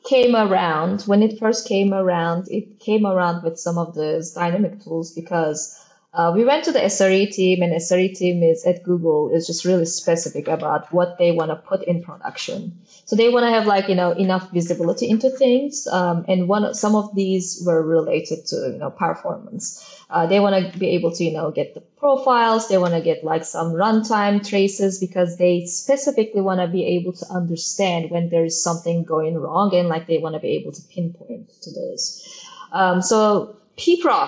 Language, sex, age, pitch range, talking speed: English, female, 20-39, 170-205 Hz, 205 wpm